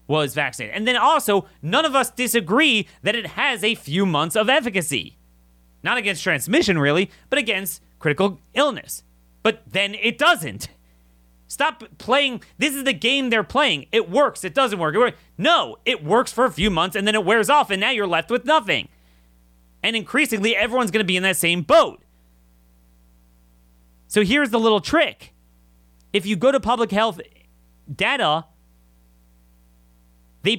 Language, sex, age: English, male, 30-49